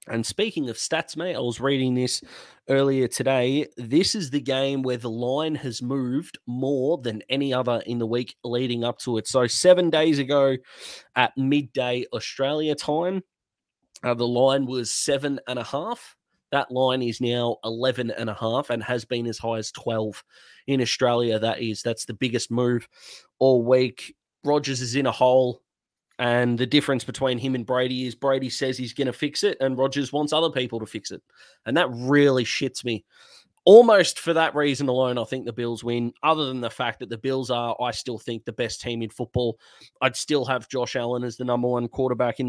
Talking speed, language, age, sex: 200 wpm, English, 20-39, male